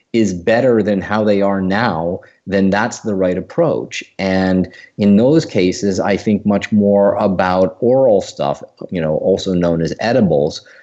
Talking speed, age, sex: 160 wpm, 40-59, male